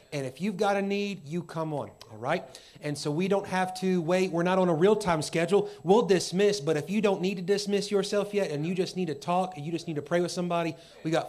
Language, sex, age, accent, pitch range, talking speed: English, male, 30-49, American, 145-175 Hz, 270 wpm